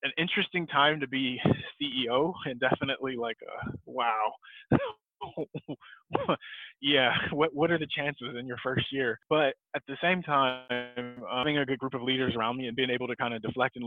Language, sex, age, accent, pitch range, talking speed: English, male, 20-39, American, 120-140 Hz, 190 wpm